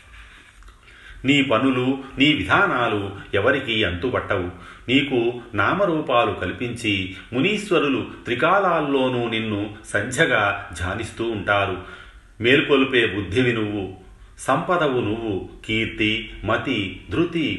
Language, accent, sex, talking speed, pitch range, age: Telugu, native, male, 80 wpm, 100-120 Hz, 40-59